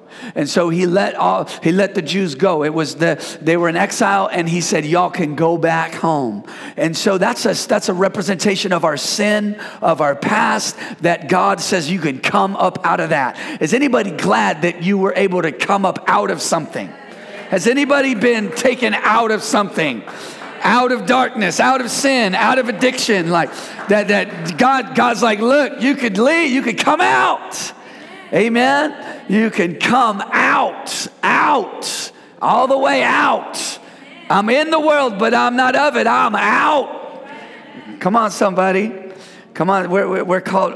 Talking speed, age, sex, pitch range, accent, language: 175 wpm, 40-59, male, 175-235 Hz, American, English